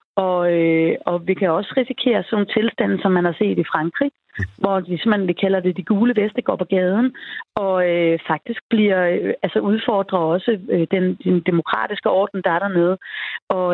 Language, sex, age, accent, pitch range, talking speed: Danish, female, 30-49, native, 185-235 Hz, 190 wpm